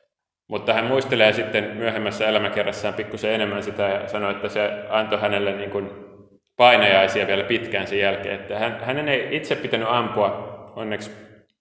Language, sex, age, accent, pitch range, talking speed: Finnish, male, 30-49, native, 100-115 Hz, 145 wpm